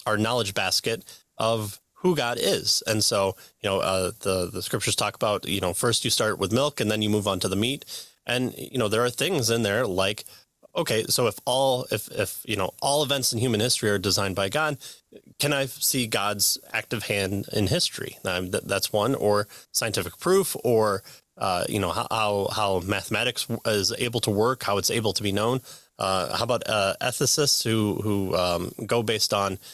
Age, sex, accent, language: 30-49, male, American, English